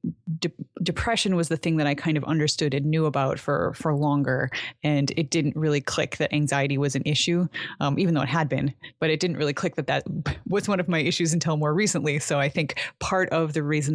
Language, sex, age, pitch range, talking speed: English, female, 20-39, 140-170 Hz, 230 wpm